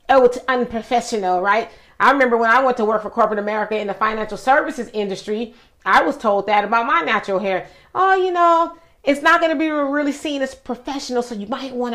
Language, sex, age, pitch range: English, female, 30-49, 215-260 Hz